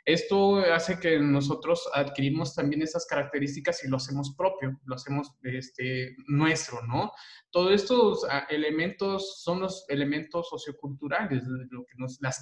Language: Spanish